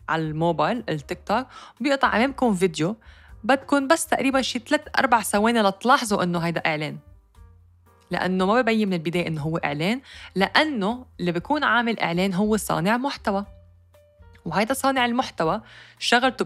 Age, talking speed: 20-39, 130 wpm